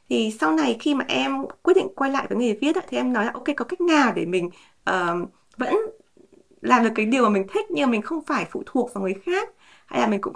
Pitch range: 205-295 Hz